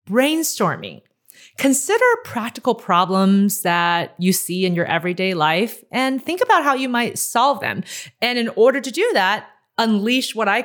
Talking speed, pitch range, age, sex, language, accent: 160 wpm, 165-235 Hz, 30-49, female, English, American